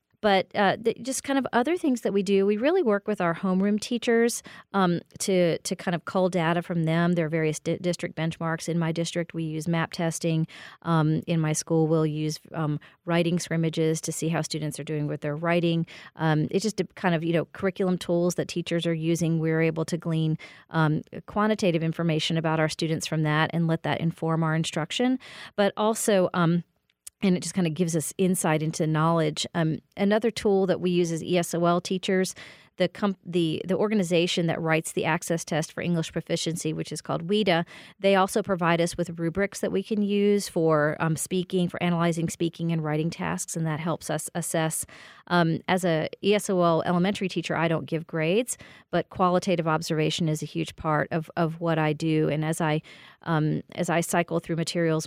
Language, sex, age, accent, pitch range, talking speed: English, female, 40-59, American, 160-185 Hz, 195 wpm